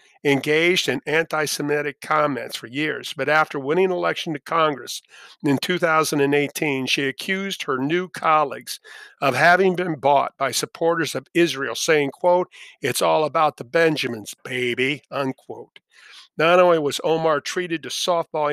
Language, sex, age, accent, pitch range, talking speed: English, male, 50-69, American, 140-170 Hz, 140 wpm